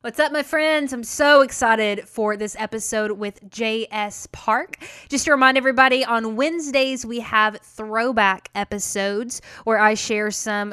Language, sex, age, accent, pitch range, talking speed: English, female, 10-29, American, 195-225 Hz, 150 wpm